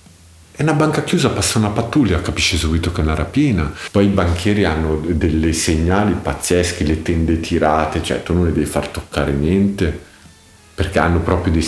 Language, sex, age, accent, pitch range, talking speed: Italian, male, 50-69, native, 80-105 Hz, 180 wpm